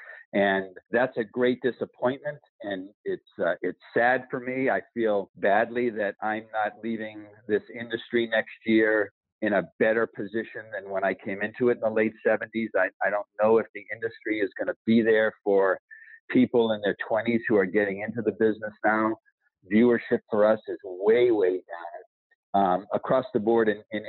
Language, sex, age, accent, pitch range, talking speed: English, male, 50-69, American, 105-120 Hz, 185 wpm